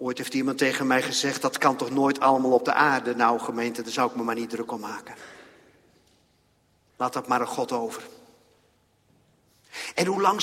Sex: male